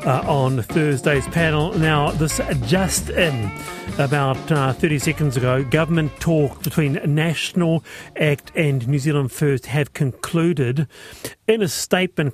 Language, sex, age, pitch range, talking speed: English, male, 40-59, 145-190 Hz, 130 wpm